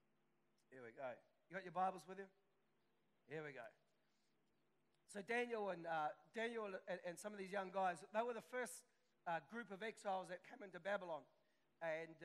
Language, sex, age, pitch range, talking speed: English, male, 40-59, 190-225 Hz, 180 wpm